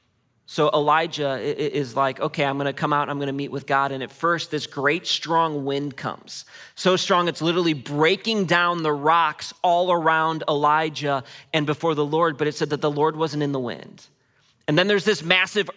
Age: 30-49